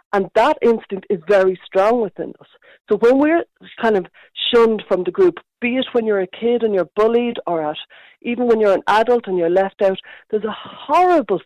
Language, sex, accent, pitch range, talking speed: English, female, Irish, 185-240 Hz, 210 wpm